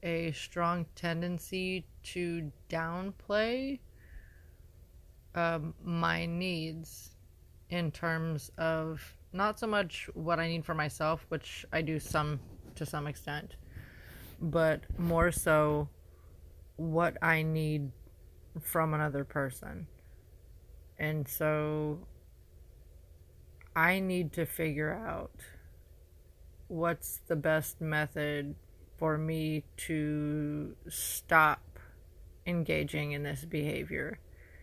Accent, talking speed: American, 95 wpm